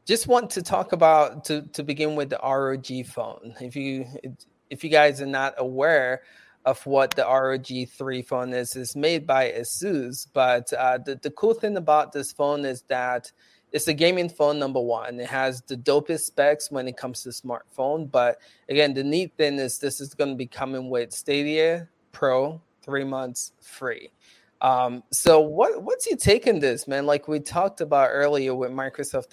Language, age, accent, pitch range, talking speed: English, 20-39, American, 130-150 Hz, 185 wpm